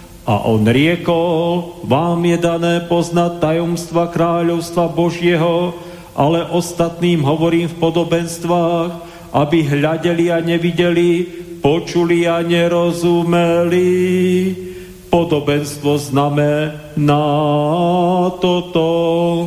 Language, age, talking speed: Slovak, 50-69, 75 wpm